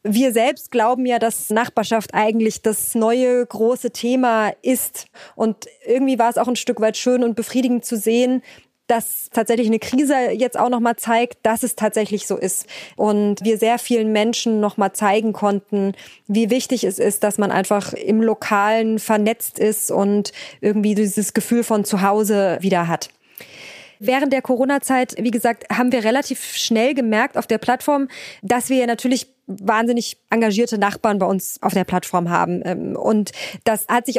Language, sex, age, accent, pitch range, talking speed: German, female, 20-39, German, 210-250 Hz, 170 wpm